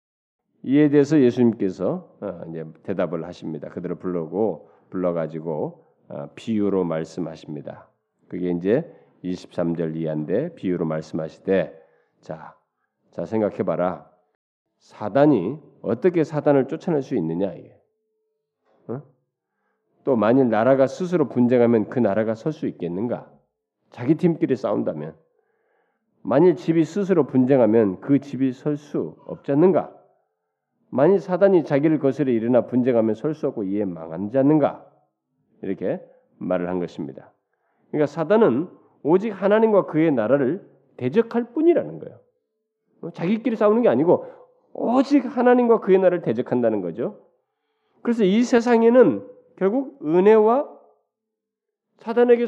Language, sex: Korean, male